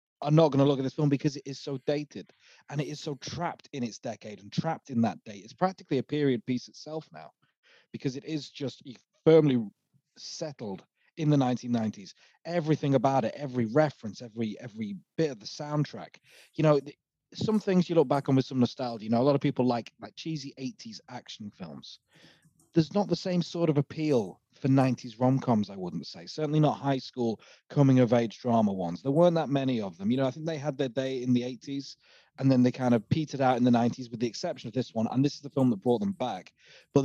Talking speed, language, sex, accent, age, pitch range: 225 wpm, English, male, British, 30-49, 120-150 Hz